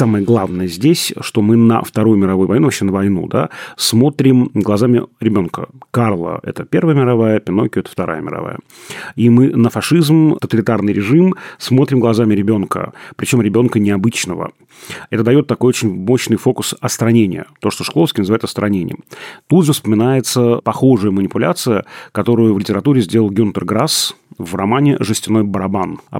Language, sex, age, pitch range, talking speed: Russian, male, 30-49, 105-130 Hz, 150 wpm